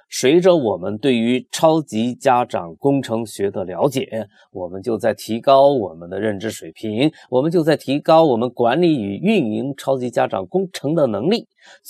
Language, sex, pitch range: Chinese, male, 115-165 Hz